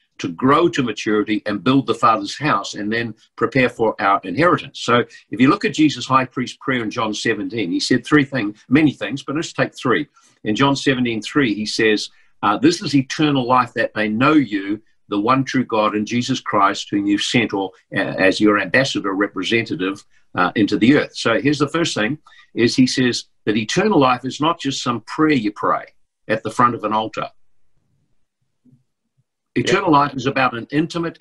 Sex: male